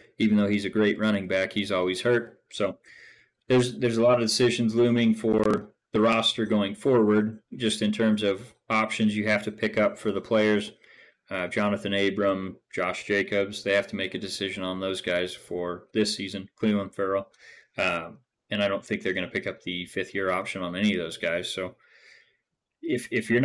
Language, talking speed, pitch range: English, 195 wpm, 100-115 Hz